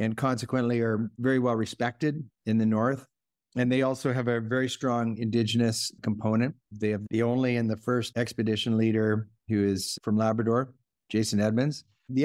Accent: American